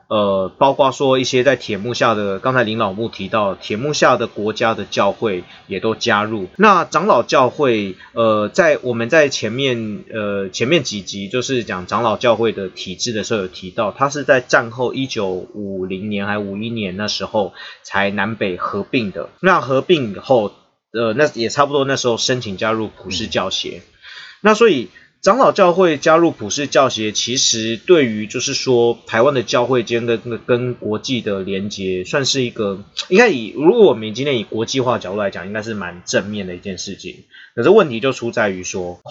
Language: Chinese